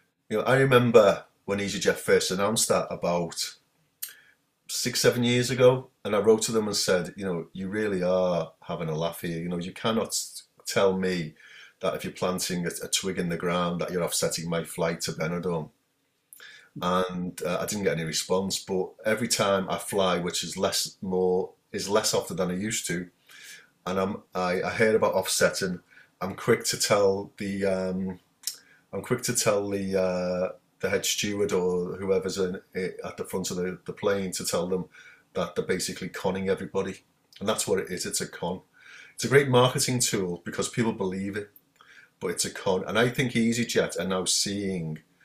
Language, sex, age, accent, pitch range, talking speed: English, male, 30-49, British, 90-110 Hz, 190 wpm